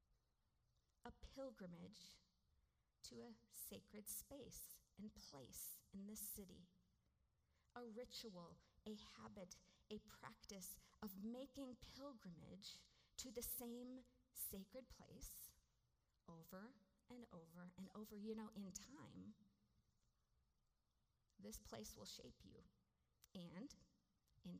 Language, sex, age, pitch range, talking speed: English, female, 50-69, 180-245 Hz, 100 wpm